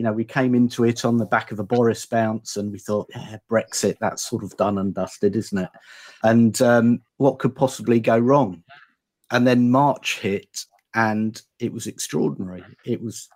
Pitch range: 105-125 Hz